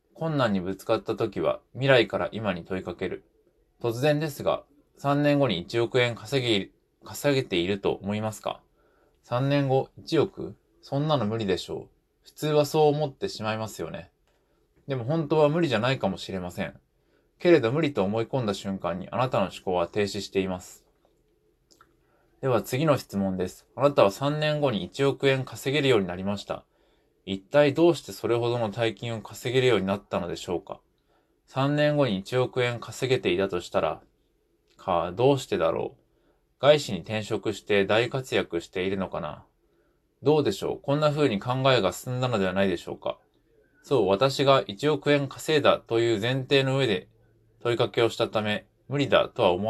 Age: 20-39